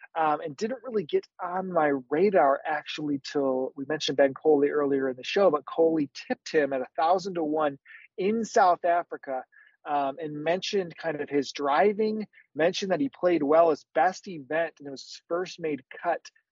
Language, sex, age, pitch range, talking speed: English, male, 30-49, 140-185 Hz, 190 wpm